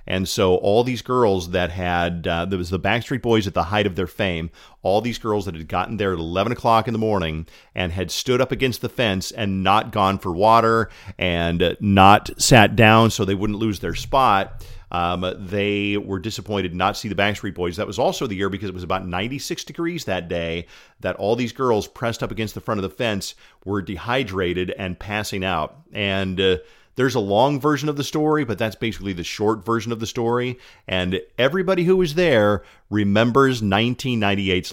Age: 40-59